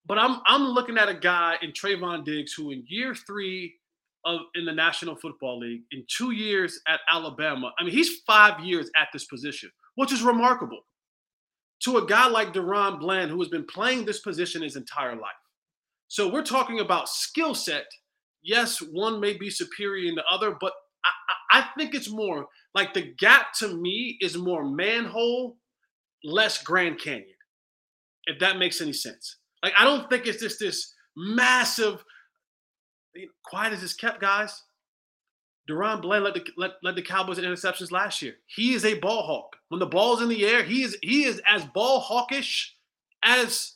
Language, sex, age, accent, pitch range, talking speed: English, male, 20-39, American, 175-245 Hz, 180 wpm